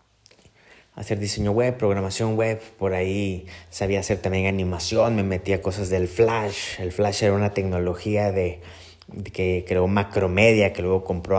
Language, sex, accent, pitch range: Spanish, male, Mexican, 95-110 Hz